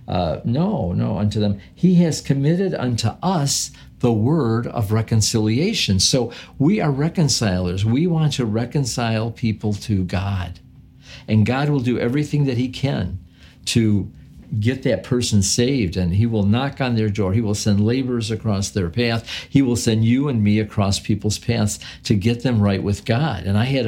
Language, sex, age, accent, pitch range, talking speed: English, male, 50-69, American, 100-130 Hz, 175 wpm